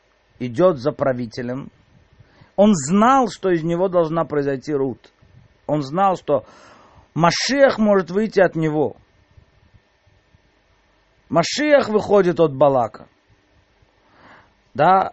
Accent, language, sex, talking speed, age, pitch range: native, Russian, male, 95 wpm, 50-69, 150-205 Hz